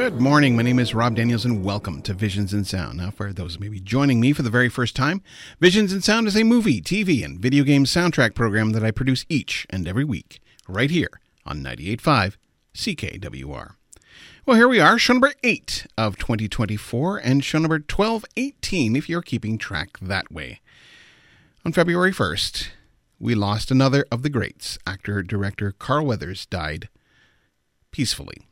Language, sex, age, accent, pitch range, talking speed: English, male, 40-59, American, 105-150 Hz, 175 wpm